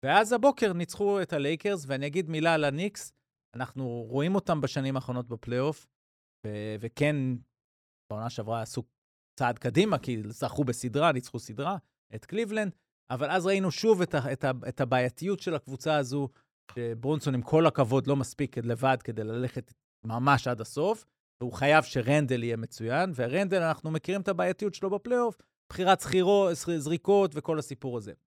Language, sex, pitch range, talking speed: Hebrew, male, 125-170 Hz, 160 wpm